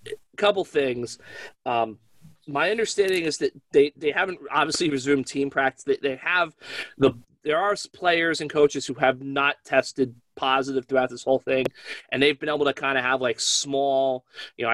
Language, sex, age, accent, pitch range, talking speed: English, male, 30-49, American, 135-185 Hz, 185 wpm